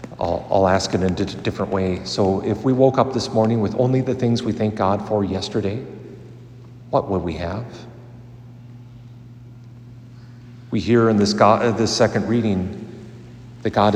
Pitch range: 105-125 Hz